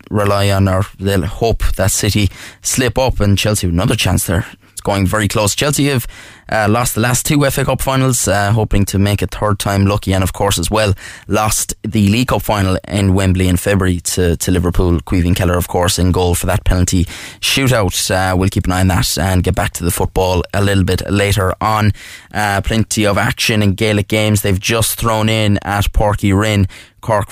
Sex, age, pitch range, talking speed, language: male, 10-29, 95-110 Hz, 210 wpm, English